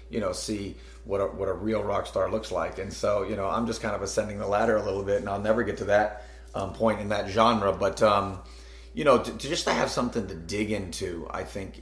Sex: male